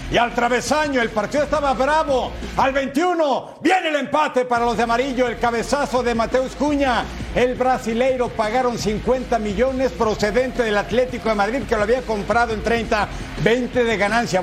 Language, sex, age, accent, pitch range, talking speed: Spanish, male, 50-69, Mexican, 225-265 Hz, 165 wpm